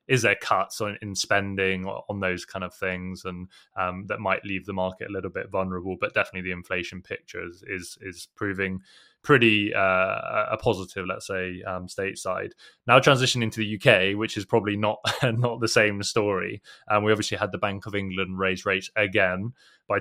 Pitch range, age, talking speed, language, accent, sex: 95-110 Hz, 20-39, 190 wpm, English, British, male